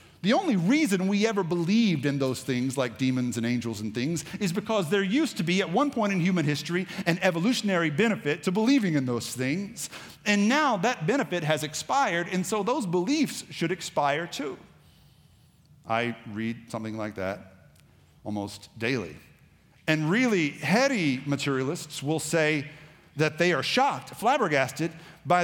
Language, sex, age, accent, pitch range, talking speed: English, male, 50-69, American, 125-180 Hz, 160 wpm